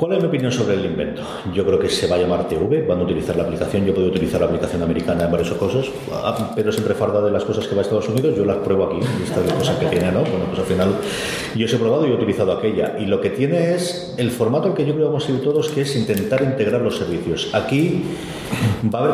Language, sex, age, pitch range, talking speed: English, male, 40-59, 105-140 Hz, 280 wpm